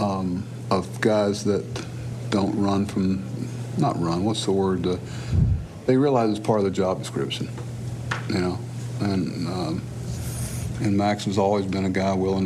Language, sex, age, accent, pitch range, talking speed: English, male, 60-79, American, 100-120 Hz, 160 wpm